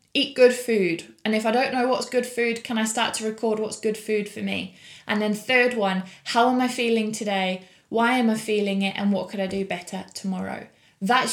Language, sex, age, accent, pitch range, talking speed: English, female, 20-39, British, 200-245 Hz, 230 wpm